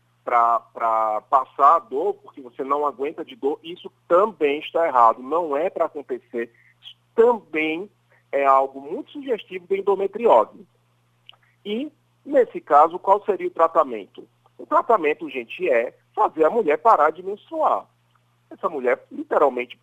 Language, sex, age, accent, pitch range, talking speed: Portuguese, male, 40-59, Brazilian, 120-180 Hz, 140 wpm